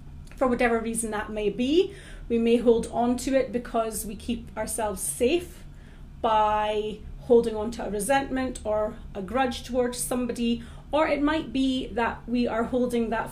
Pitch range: 220-275 Hz